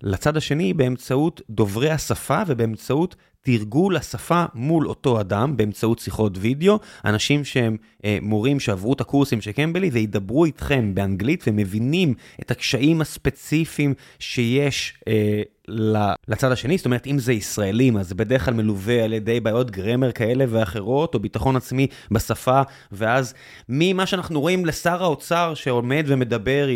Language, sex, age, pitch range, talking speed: Hebrew, male, 20-39, 115-150 Hz, 135 wpm